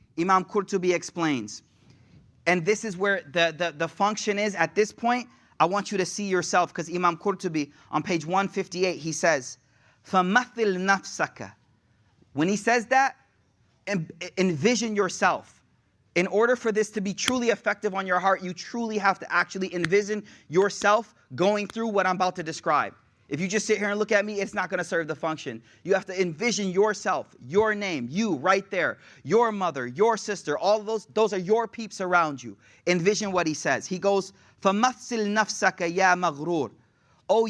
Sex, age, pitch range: male, 30-49, 160-210 Hz